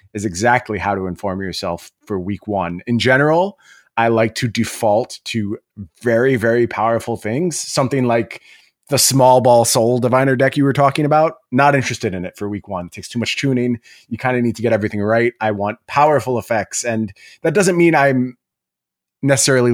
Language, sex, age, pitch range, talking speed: English, male, 30-49, 110-135 Hz, 190 wpm